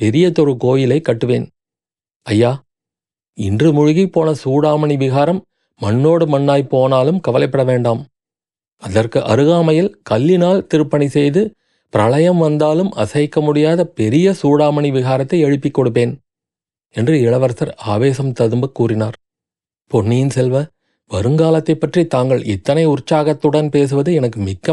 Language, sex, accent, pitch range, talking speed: Tamil, male, native, 120-155 Hz, 105 wpm